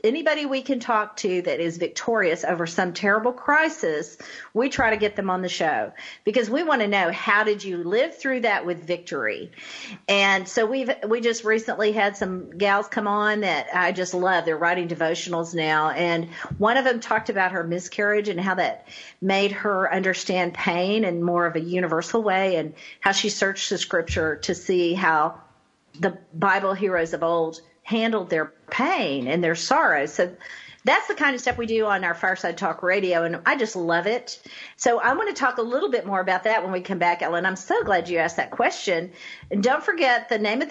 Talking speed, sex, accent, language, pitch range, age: 205 wpm, female, American, English, 175-225 Hz, 50-69